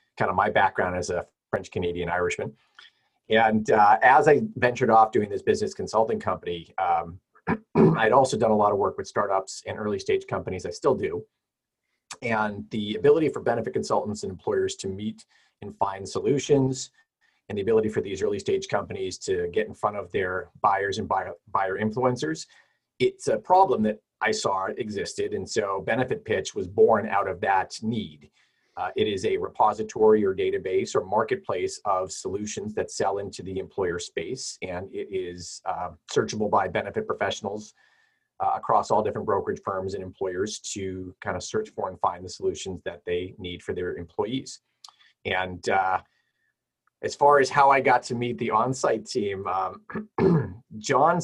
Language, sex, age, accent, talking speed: English, male, 40-59, American, 175 wpm